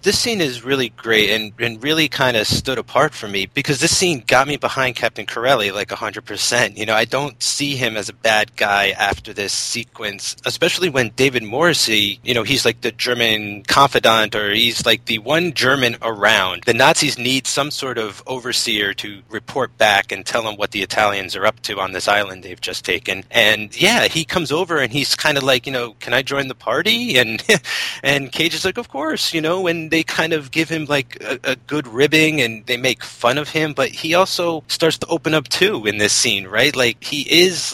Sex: male